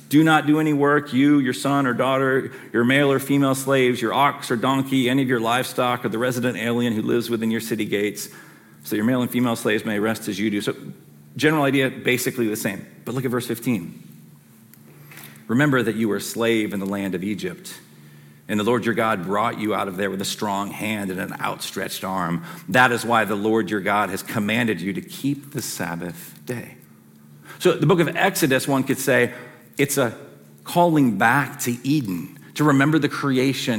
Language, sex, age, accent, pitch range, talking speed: English, male, 40-59, American, 105-140 Hz, 210 wpm